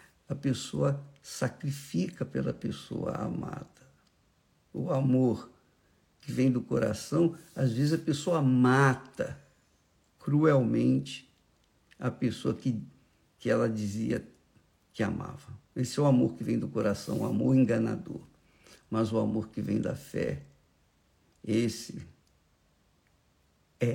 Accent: Brazilian